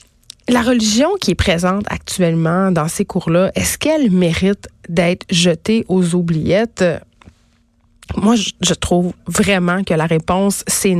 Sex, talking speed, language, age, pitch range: female, 130 wpm, French, 30-49, 180-220 Hz